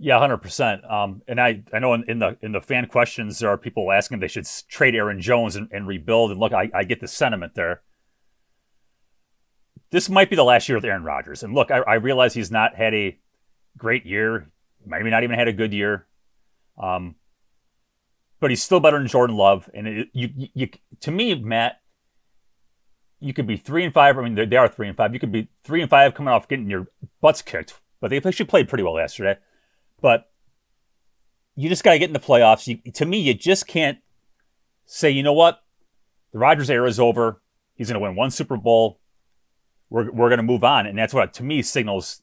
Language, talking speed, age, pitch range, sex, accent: English, 215 wpm, 30-49, 105-130 Hz, male, American